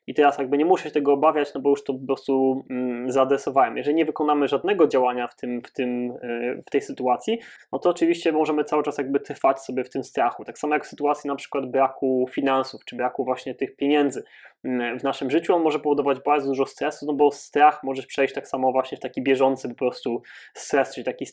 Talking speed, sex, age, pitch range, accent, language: 220 wpm, male, 20-39, 130-145 Hz, native, Polish